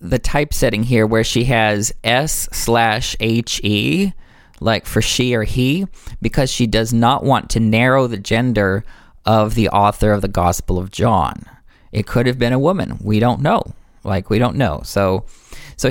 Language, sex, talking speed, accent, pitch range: English, male, 175 wpm, American, 105-130 Hz